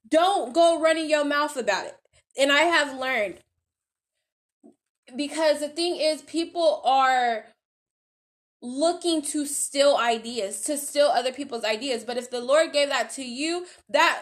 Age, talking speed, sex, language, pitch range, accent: 10-29, 150 wpm, female, English, 240-315 Hz, American